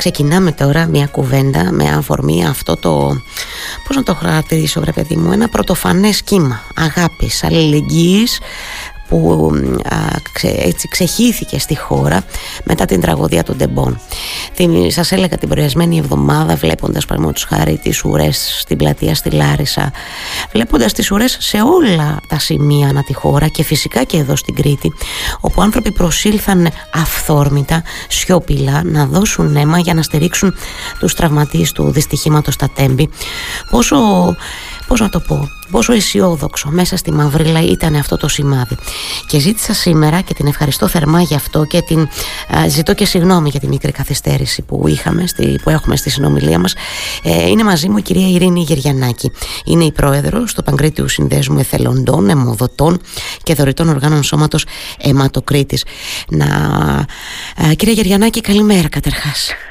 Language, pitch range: Greek, 140-180 Hz